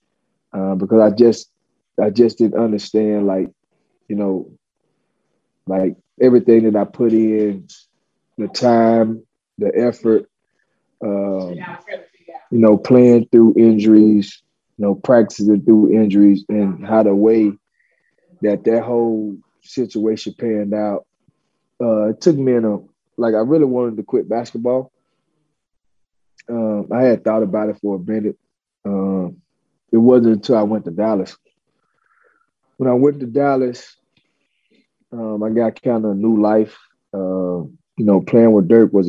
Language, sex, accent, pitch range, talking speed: English, male, American, 100-115 Hz, 140 wpm